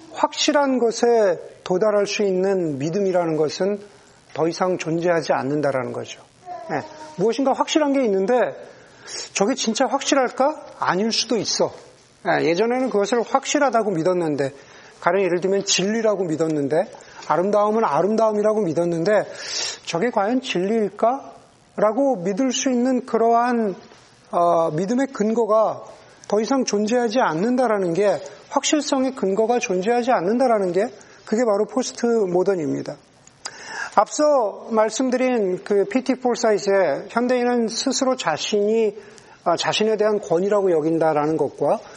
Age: 40-59